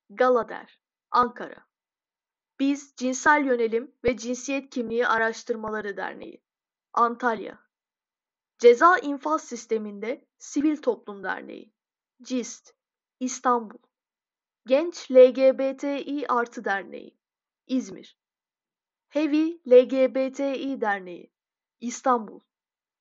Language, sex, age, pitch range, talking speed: Turkish, female, 10-29, 240-285 Hz, 75 wpm